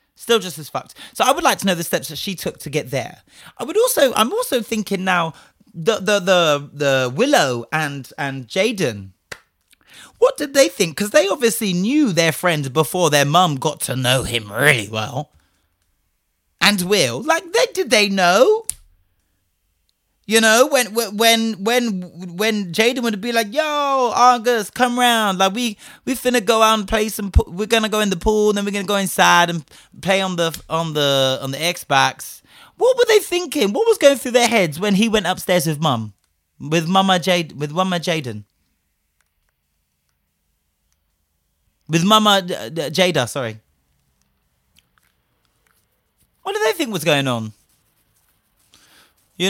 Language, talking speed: English, 165 wpm